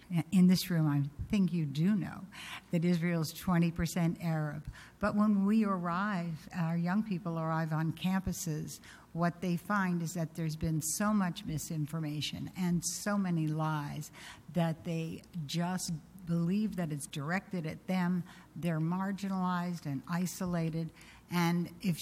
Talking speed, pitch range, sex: 140 wpm, 165-190 Hz, female